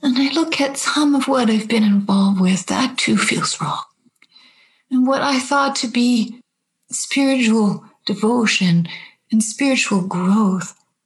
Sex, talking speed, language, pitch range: female, 140 wpm, English, 175-245 Hz